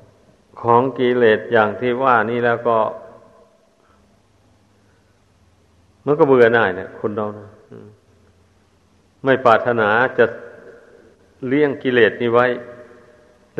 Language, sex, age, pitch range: Thai, male, 60-79, 105-130 Hz